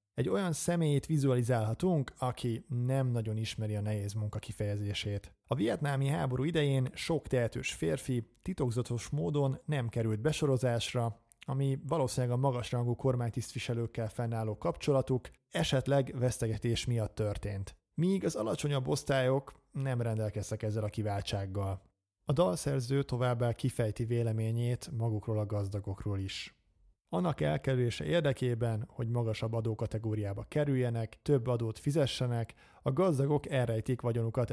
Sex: male